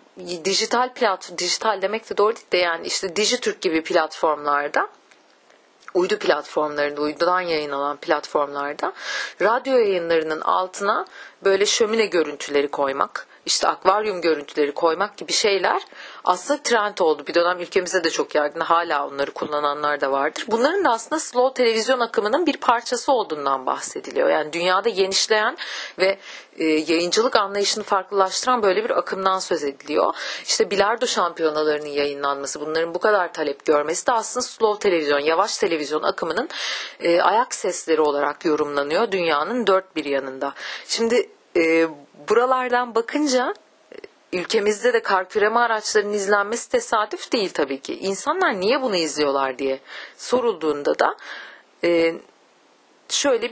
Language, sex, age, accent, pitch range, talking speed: Turkish, female, 40-59, native, 155-235 Hz, 130 wpm